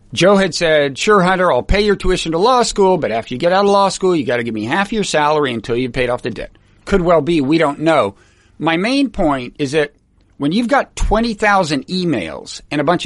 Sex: male